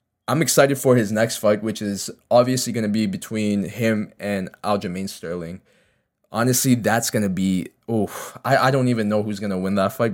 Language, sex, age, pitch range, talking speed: English, male, 20-39, 100-115 Hz, 200 wpm